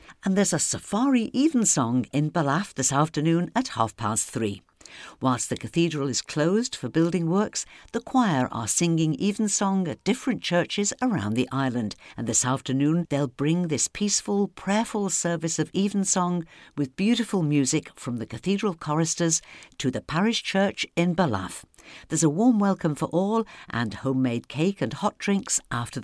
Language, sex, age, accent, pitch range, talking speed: English, female, 50-69, British, 130-190 Hz, 160 wpm